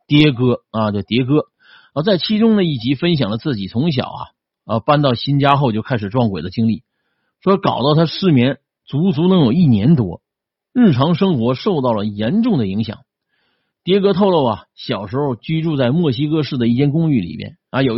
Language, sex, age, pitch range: Chinese, male, 50-69, 115-170 Hz